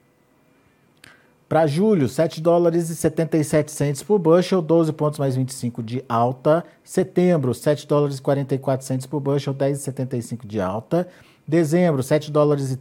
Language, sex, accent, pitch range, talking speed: Portuguese, male, Brazilian, 130-170 Hz, 125 wpm